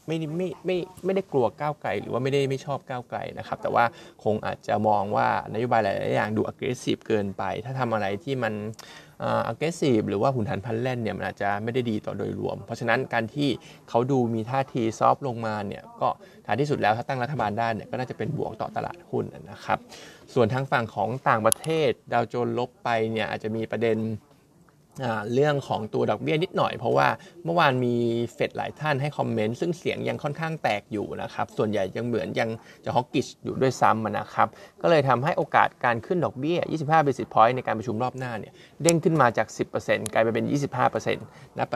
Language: Thai